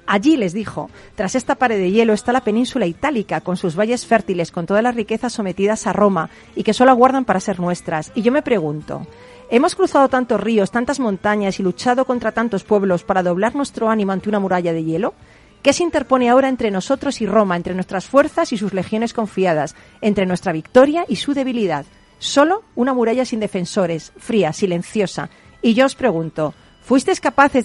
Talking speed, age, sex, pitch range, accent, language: 190 wpm, 40-59, female, 190-240 Hz, Spanish, Spanish